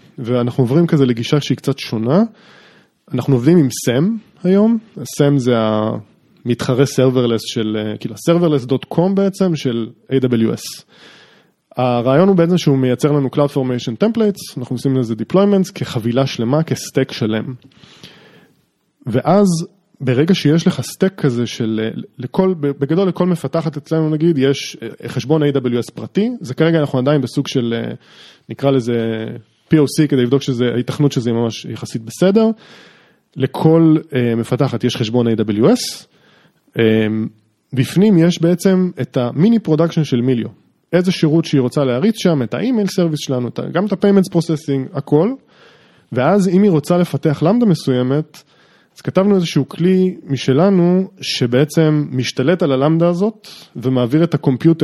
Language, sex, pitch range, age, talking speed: Hebrew, male, 125-180 Hz, 20-39, 135 wpm